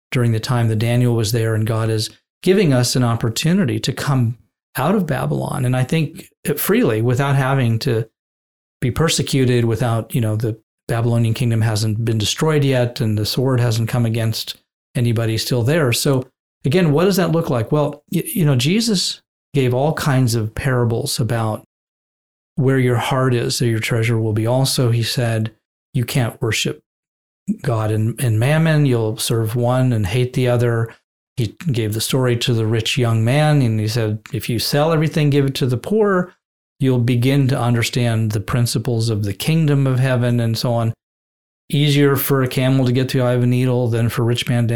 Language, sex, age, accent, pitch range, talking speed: English, male, 40-59, American, 115-140 Hz, 190 wpm